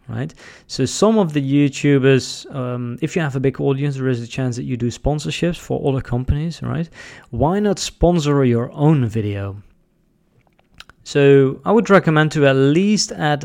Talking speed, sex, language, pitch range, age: 175 wpm, male, English, 120-150 Hz, 20-39